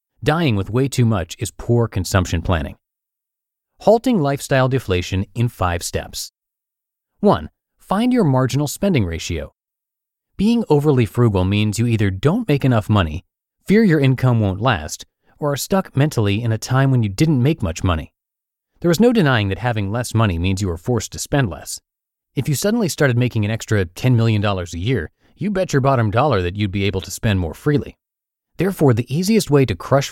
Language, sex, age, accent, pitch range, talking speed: English, male, 30-49, American, 100-140 Hz, 185 wpm